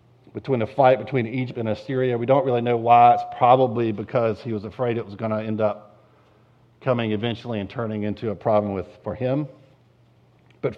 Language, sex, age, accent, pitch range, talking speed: English, male, 50-69, American, 115-160 Hz, 195 wpm